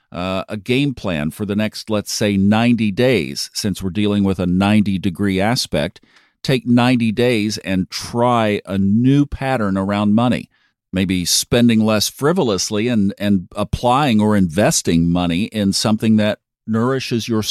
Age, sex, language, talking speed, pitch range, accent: 50-69, male, English, 145 wpm, 95-120 Hz, American